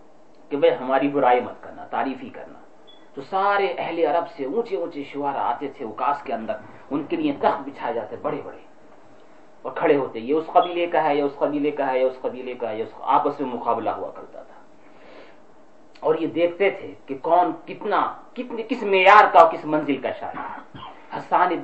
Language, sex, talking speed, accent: English, male, 155 wpm, Indian